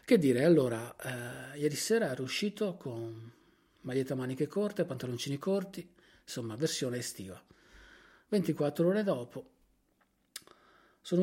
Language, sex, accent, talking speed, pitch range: Italian, male, native, 120 wpm, 120-150 Hz